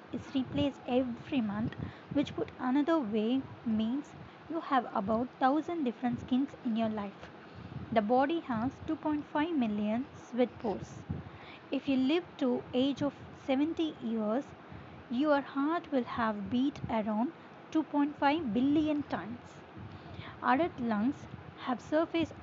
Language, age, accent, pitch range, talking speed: Tamil, 20-39, native, 230-285 Hz, 125 wpm